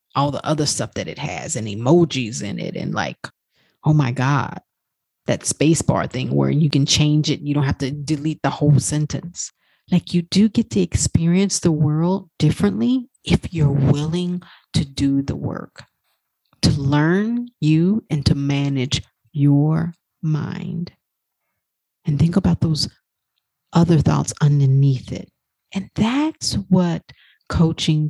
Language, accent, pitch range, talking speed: English, American, 145-185 Hz, 150 wpm